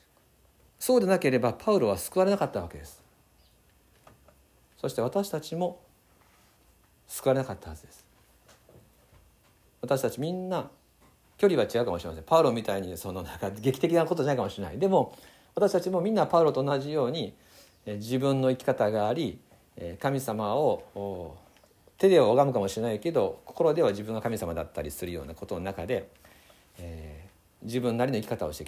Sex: male